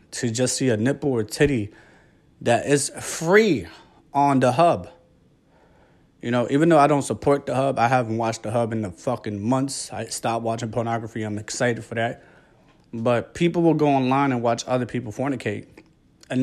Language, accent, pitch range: English, American, 115-140 Hz